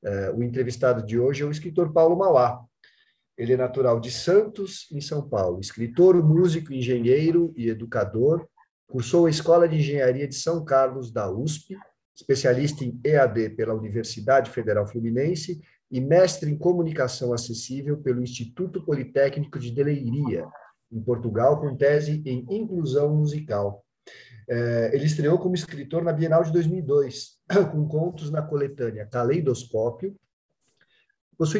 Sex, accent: male, Brazilian